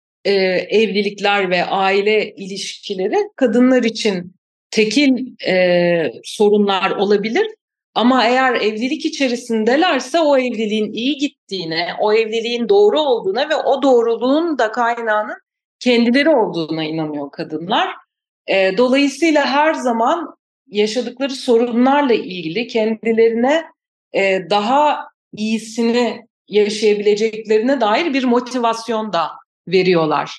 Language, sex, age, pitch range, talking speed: Turkish, female, 40-59, 190-255 Hz, 95 wpm